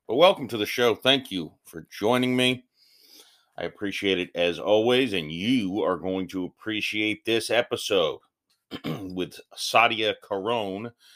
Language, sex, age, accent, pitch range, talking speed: English, male, 30-49, American, 85-110 Hz, 140 wpm